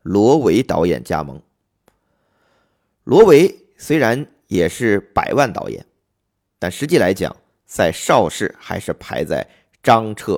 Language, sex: Chinese, male